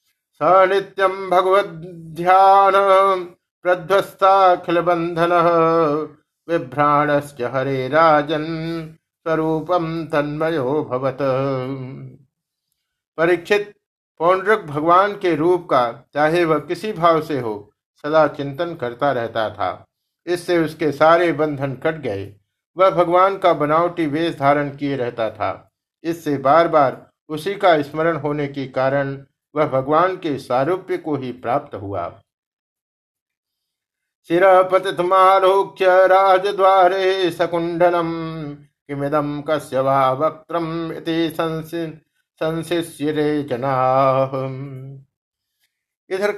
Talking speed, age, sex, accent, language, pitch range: 75 wpm, 50-69, male, native, Hindi, 140-175 Hz